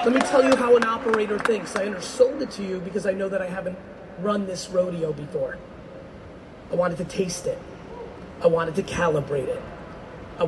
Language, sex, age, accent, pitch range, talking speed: English, male, 30-49, American, 180-245 Hz, 195 wpm